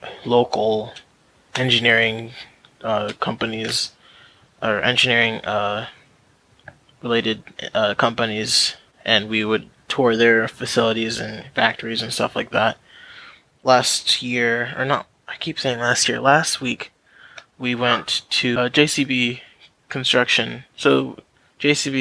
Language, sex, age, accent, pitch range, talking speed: English, male, 20-39, American, 110-125 Hz, 110 wpm